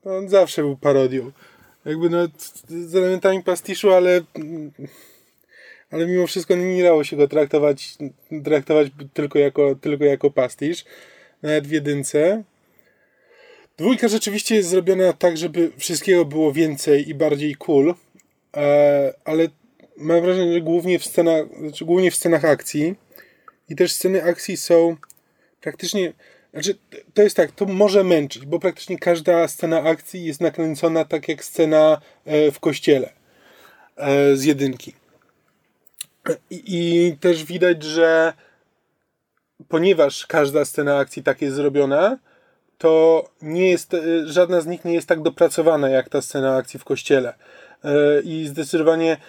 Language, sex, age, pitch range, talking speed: Polish, male, 20-39, 150-180 Hz, 125 wpm